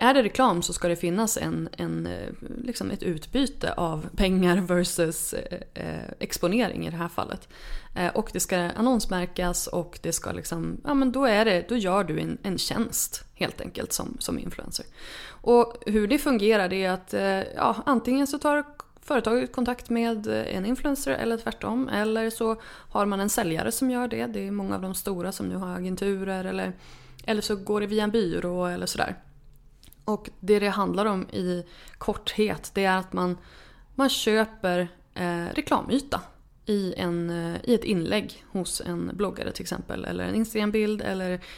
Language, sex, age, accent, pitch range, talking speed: English, female, 20-39, Swedish, 175-230 Hz, 155 wpm